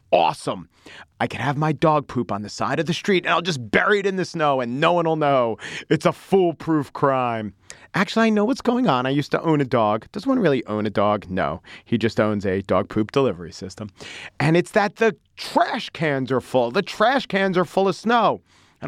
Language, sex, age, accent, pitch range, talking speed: English, male, 40-59, American, 105-170 Hz, 230 wpm